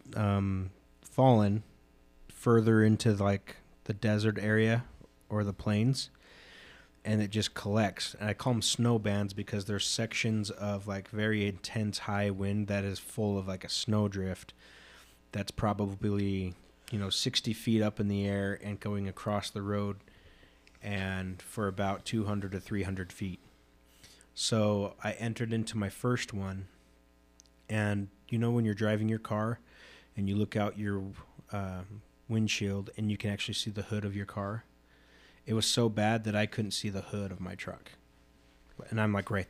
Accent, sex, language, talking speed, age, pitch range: American, male, English, 165 wpm, 30-49, 95-110 Hz